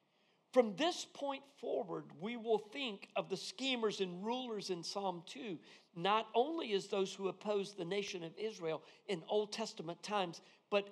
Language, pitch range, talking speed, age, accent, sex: English, 185-245 Hz, 165 wpm, 50-69, American, male